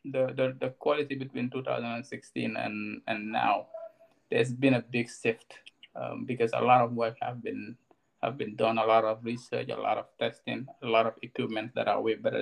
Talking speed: 200 wpm